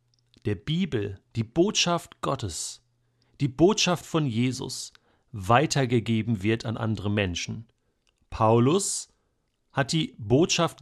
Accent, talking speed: German, 100 wpm